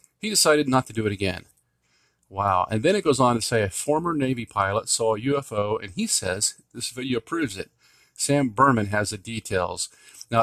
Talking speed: 200 wpm